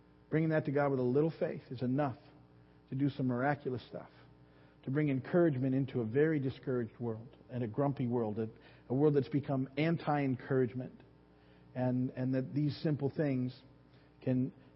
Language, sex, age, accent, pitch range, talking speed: English, male, 40-59, American, 130-165 Hz, 165 wpm